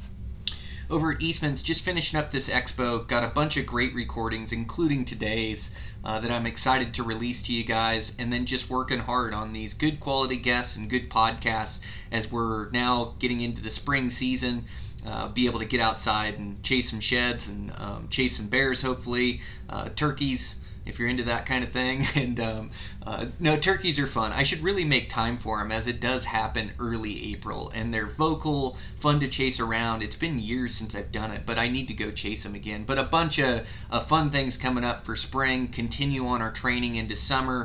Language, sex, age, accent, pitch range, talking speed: English, male, 30-49, American, 110-130 Hz, 205 wpm